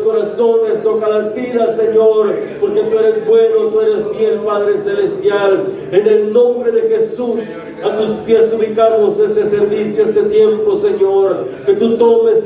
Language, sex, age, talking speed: Spanish, male, 40-59, 150 wpm